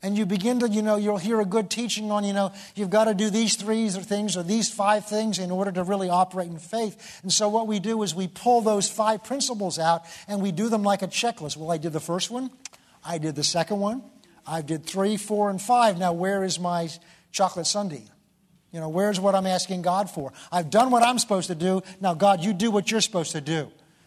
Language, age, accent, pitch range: English, 50-69, American, 180-220 Hz